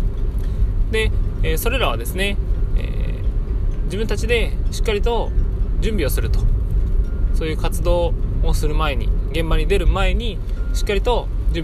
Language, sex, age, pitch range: Japanese, male, 20-39, 85-100 Hz